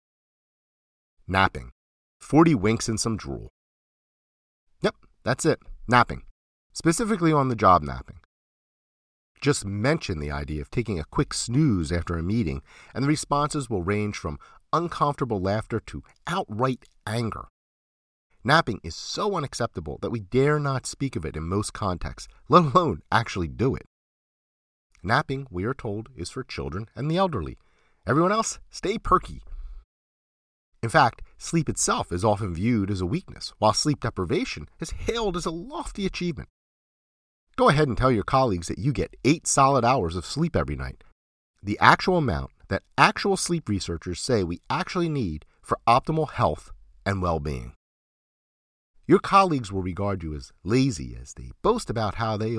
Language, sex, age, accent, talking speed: English, male, 40-59, American, 150 wpm